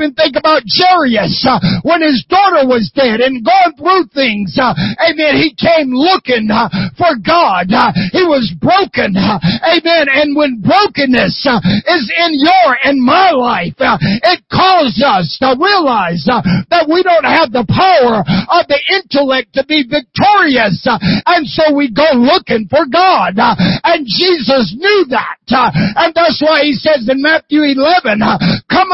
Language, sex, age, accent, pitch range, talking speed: English, male, 50-69, American, 245-335 Hz, 165 wpm